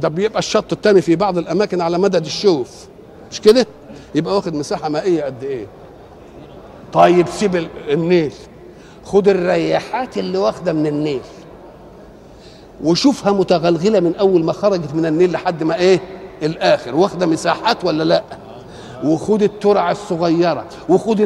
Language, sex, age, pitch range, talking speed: Arabic, male, 50-69, 165-210 Hz, 135 wpm